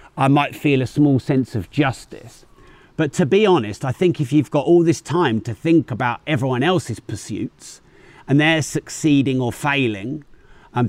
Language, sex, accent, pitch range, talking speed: English, male, British, 120-150 Hz, 175 wpm